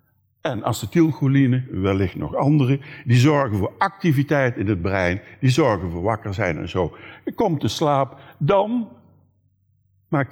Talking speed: 145 wpm